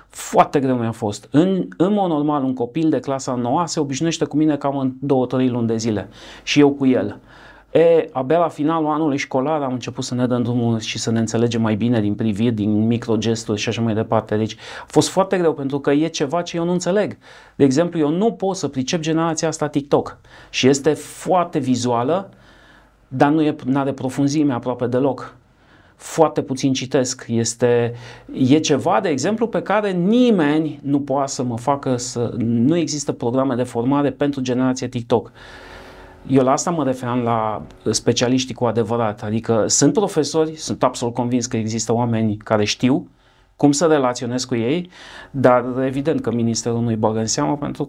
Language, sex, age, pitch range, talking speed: Romanian, male, 30-49, 120-150 Hz, 180 wpm